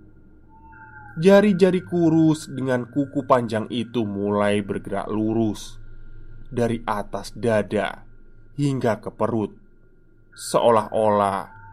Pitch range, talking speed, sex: 110-140 Hz, 80 wpm, male